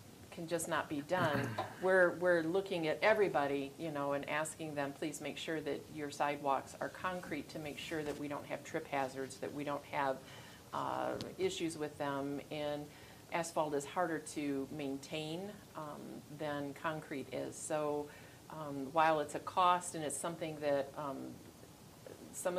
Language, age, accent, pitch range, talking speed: English, 40-59, American, 140-160 Hz, 165 wpm